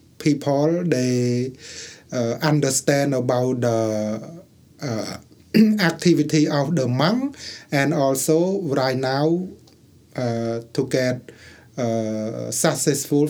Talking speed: 90 wpm